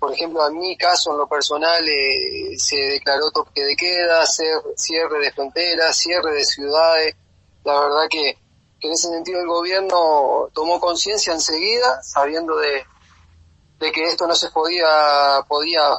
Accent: Argentinian